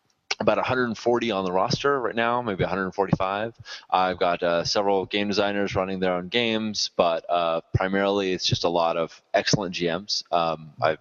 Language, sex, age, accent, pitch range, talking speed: English, male, 20-39, American, 90-110 Hz, 170 wpm